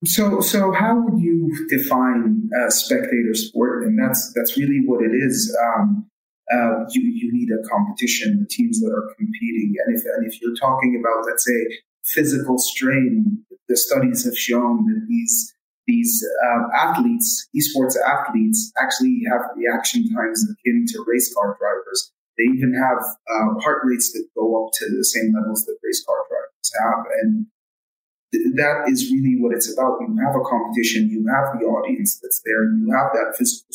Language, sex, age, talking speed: English, male, 30-49, 180 wpm